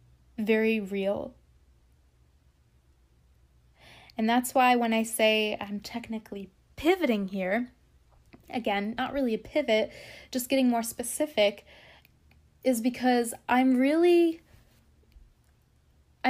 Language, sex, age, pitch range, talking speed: English, female, 20-39, 205-250 Hz, 90 wpm